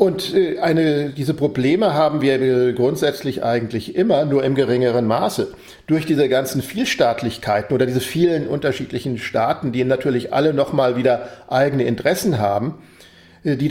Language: English